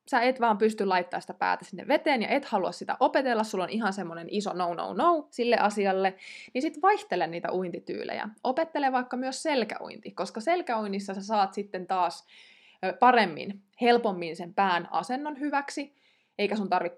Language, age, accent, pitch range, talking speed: Finnish, 20-39, native, 185-240 Hz, 165 wpm